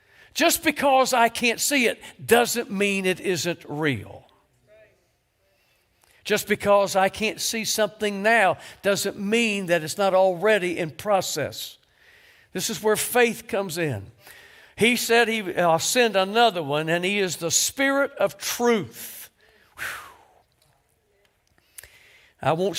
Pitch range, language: 155-215 Hz, English